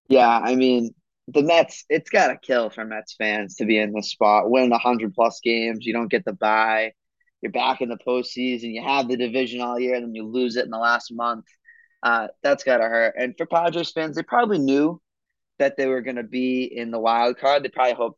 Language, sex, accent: English, male, American